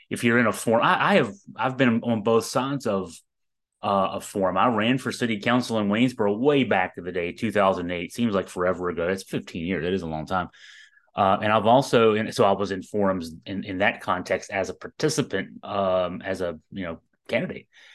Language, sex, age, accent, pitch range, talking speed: English, male, 30-49, American, 95-120 Hz, 225 wpm